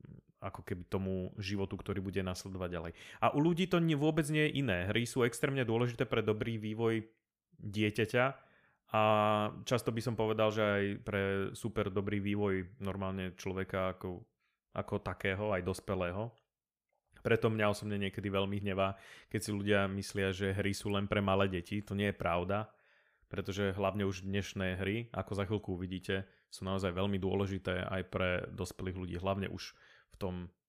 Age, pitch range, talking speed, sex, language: 30-49, 95-120 Hz, 165 wpm, male, Slovak